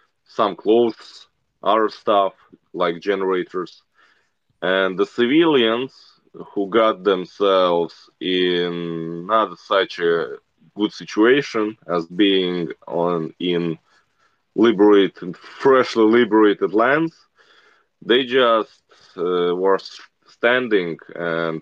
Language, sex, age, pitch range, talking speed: English, male, 20-39, 90-110 Hz, 90 wpm